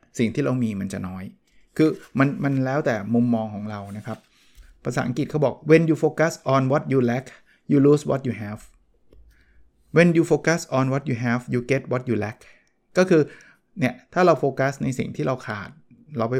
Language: Thai